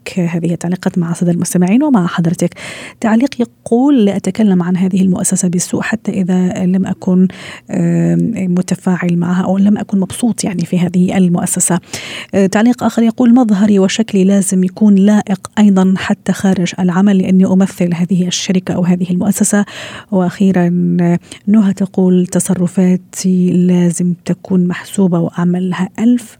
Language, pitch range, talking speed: Arabic, 180-225 Hz, 130 wpm